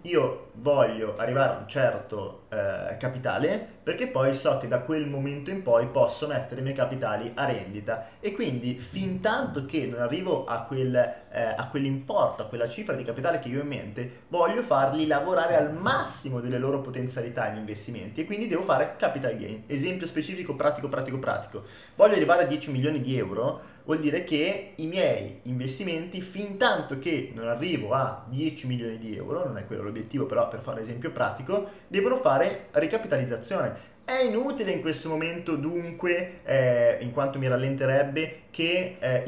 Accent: native